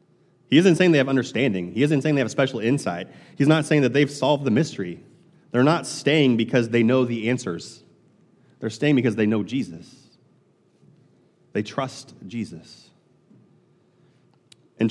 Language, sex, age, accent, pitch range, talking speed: English, male, 30-49, American, 100-130 Hz, 160 wpm